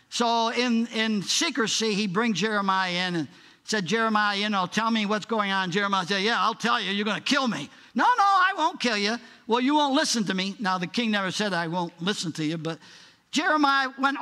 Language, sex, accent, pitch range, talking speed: English, male, American, 190-245 Hz, 230 wpm